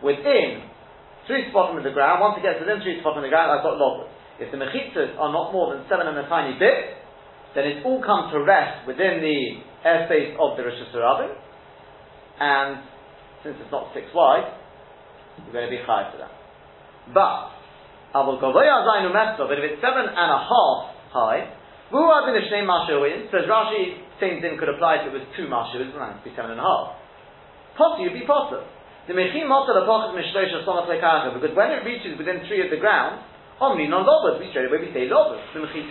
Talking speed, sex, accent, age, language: 165 wpm, male, British, 40-59, English